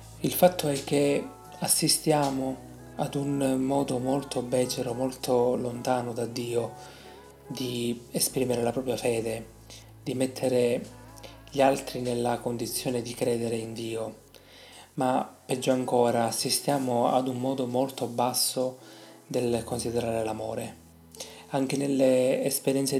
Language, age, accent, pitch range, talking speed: Italian, 30-49, native, 115-135 Hz, 115 wpm